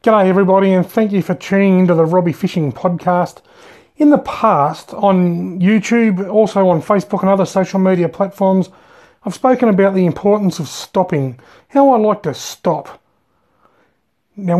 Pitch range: 180-210 Hz